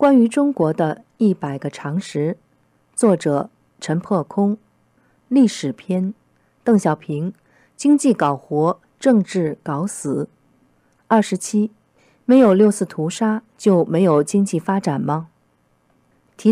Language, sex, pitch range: Chinese, female, 155-215 Hz